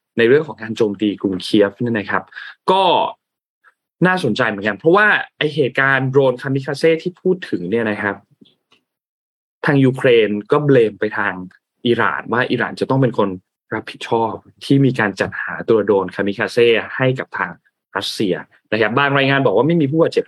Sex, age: male, 20-39